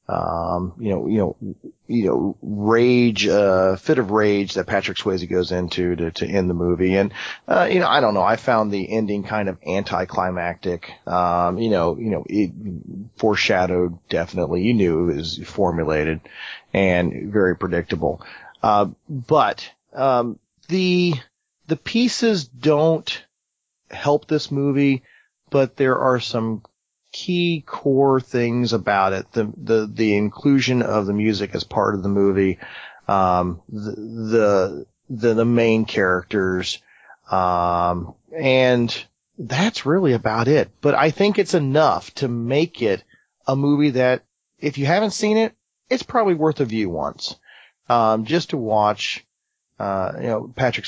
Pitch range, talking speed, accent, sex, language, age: 95-140 Hz, 150 wpm, American, male, English, 30-49